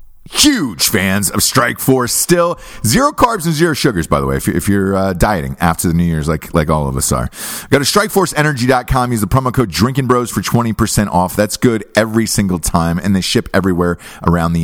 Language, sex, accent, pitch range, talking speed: English, male, American, 95-140 Hz, 210 wpm